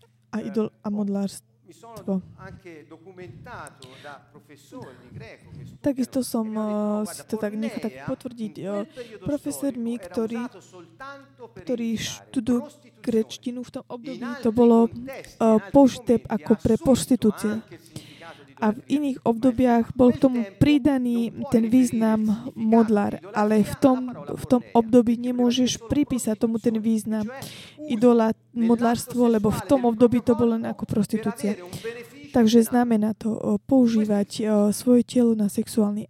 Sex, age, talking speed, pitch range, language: female, 20-39, 115 wpm, 210-245 Hz, Slovak